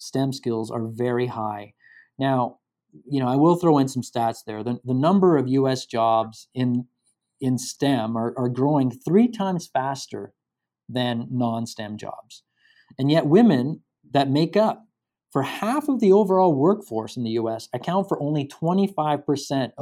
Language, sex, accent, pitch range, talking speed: English, male, American, 120-160 Hz, 160 wpm